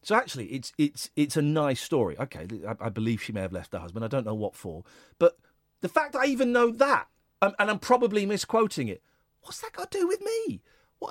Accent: British